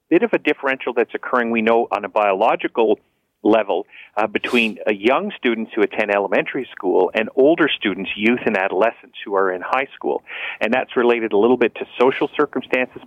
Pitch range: 105-135 Hz